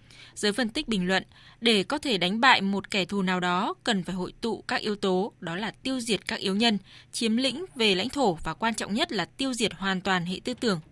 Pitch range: 185-245 Hz